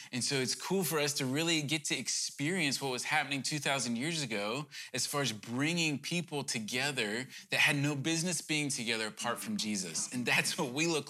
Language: English